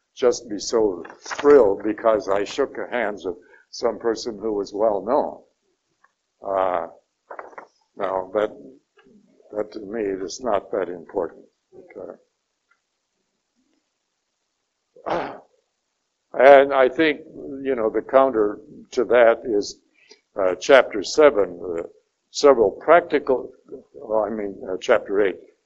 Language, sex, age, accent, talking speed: English, male, 60-79, American, 110 wpm